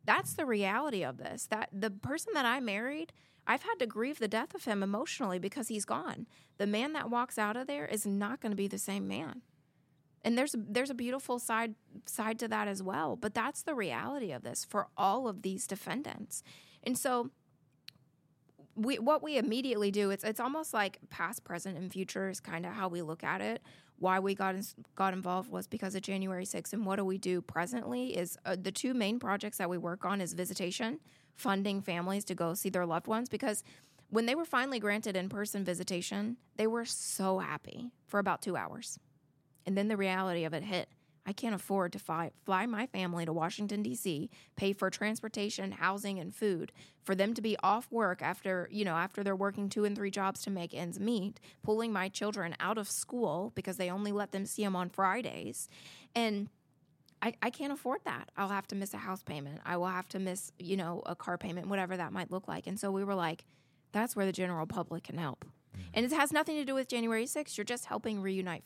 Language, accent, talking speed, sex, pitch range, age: English, American, 215 wpm, female, 180-225 Hz, 20-39